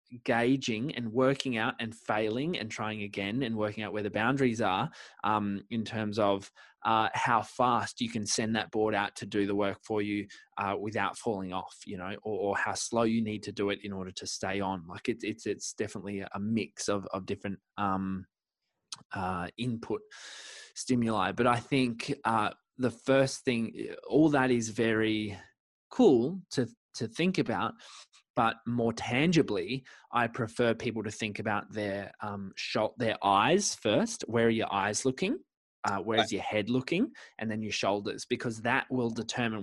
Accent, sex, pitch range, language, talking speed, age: Australian, male, 100-120 Hz, English, 175 wpm, 20-39